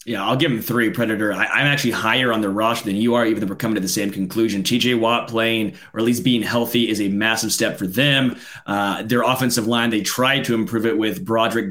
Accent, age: American, 30-49